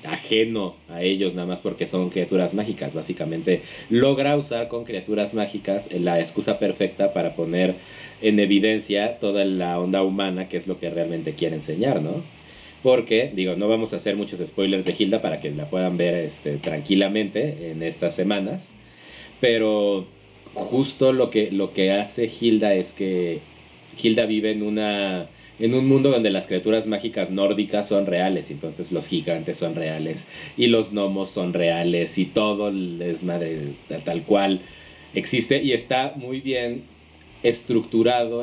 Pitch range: 90-115 Hz